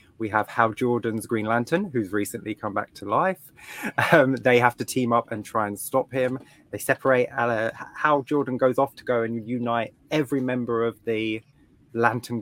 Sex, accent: male, British